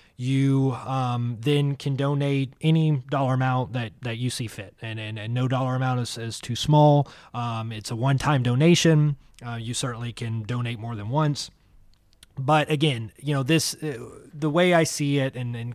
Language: English